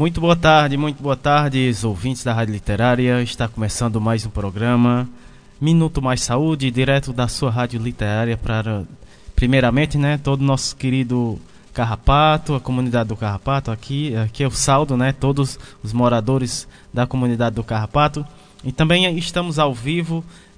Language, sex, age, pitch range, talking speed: Portuguese, male, 20-39, 115-140 Hz, 155 wpm